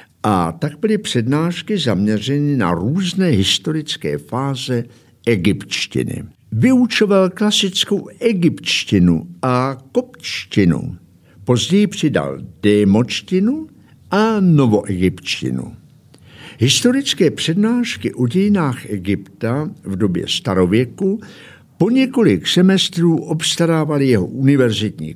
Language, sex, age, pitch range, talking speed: Czech, male, 60-79, 110-175 Hz, 80 wpm